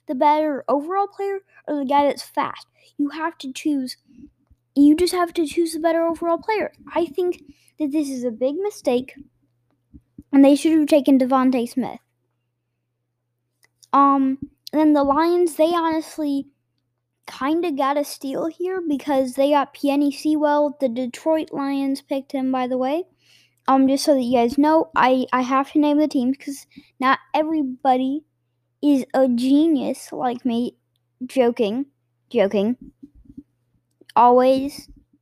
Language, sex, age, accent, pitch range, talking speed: English, female, 10-29, American, 235-300 Hz, 150 wpm